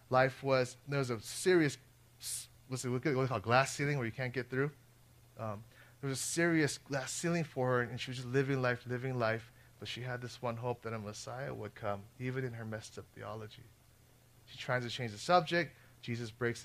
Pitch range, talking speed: 120-135 Hz, 210 wpm